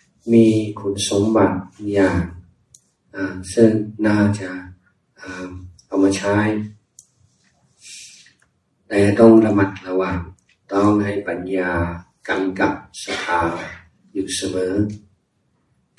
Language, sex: Thai, male